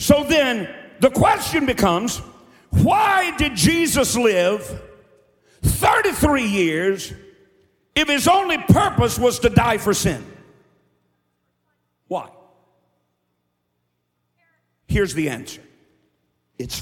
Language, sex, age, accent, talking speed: English, male, 50-69, American, 90 wpm